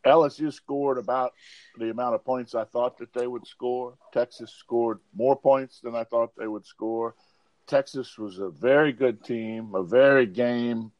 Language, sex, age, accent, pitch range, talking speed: English, male, 50-69, American, 110-125 Hz, 175 wpm